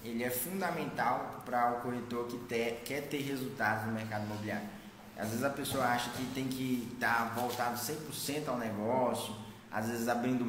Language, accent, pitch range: Portuguese, Brazilian, 120-155 Hz